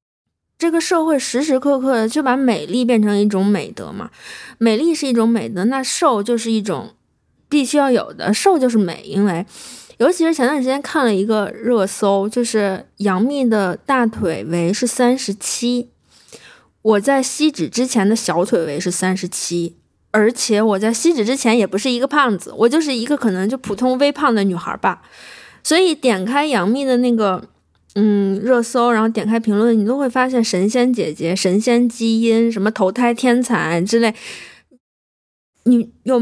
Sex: female